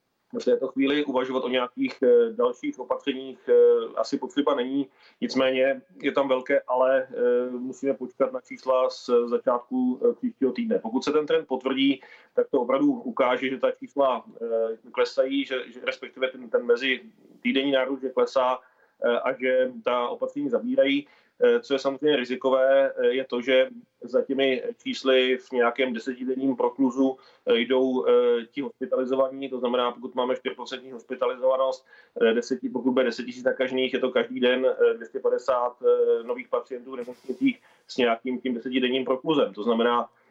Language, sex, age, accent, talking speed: Czech, male, 30-49, native, 140 wpm